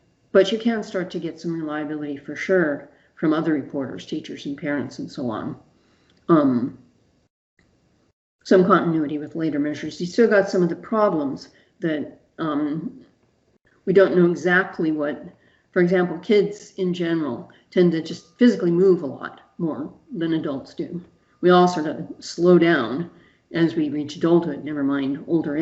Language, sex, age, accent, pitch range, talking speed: English, female, 50-69, American, 165-210 Hz, 160 wpm